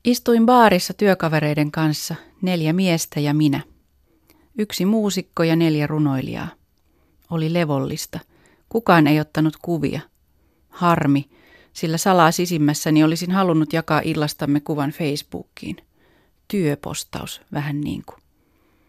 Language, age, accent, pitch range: Finnish, 30-49, native, 145-180 Hz